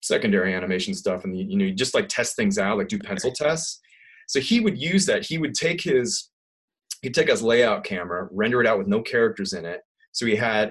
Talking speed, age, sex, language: 235 wpm, 30-49, male, English